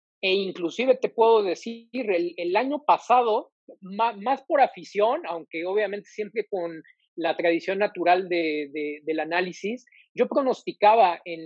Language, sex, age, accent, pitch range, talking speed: Spanish, male, 40-59, Mexican, 175-245 Hz, 140 wpm